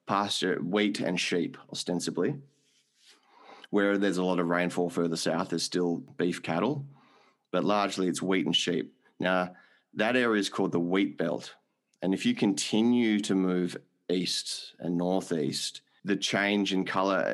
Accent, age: Australian, 30-49